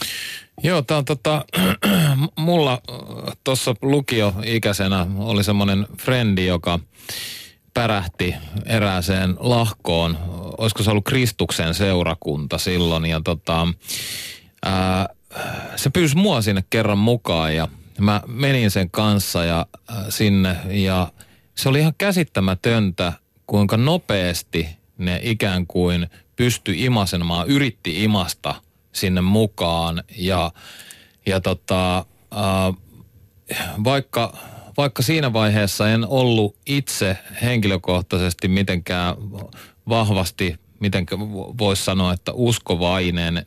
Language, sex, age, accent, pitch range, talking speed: Finnish, male, 30-49, native, 90-115 Hz, 100 wpm